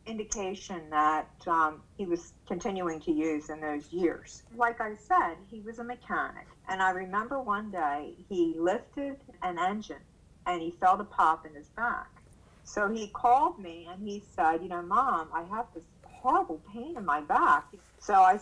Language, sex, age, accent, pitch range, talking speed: English, female, 50-69, American, 170-240 Hz, 180 wpm